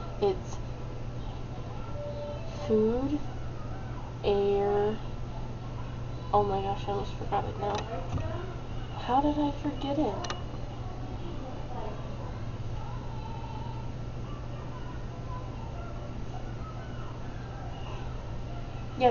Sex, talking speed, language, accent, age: female, 55 wpm, English, American, 10-29